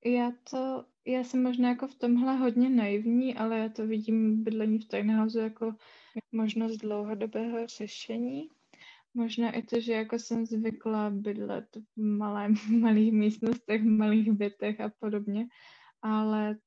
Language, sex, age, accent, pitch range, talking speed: Czech, female, 20-39, native, 215-230 Hz, 140 wpm